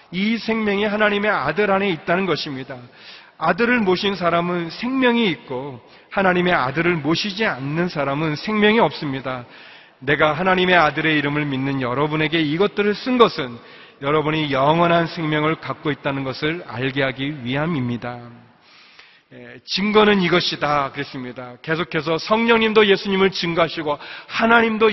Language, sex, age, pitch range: Korean, male, 30-49, 140-215 Hz